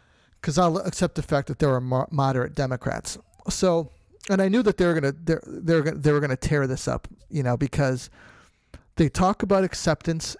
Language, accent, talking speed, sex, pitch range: English, American, 190 wpm, male, 140-165 Hz